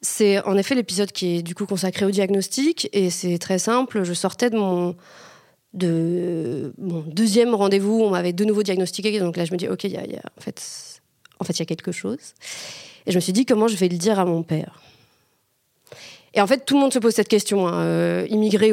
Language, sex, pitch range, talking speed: French, female, 180-225 Hz, 245 wpm